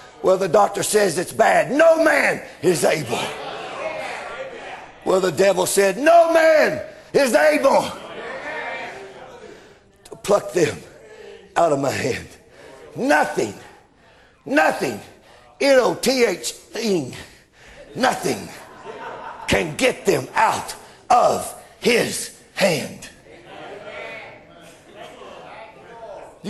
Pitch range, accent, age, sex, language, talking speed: 225-315 Hz, American, 60-79, male, English, 90 wpm